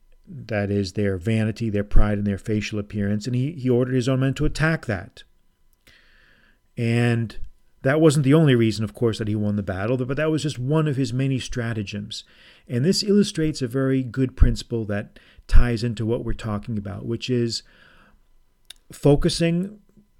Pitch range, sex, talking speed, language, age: 110-140 Hz, male, 175 wpm, English, 40-59